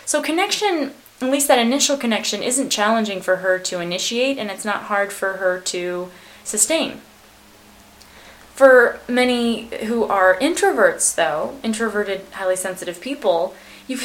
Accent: American